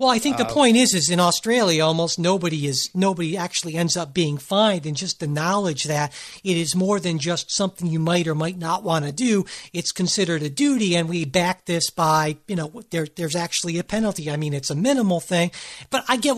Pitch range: 170-210 Hz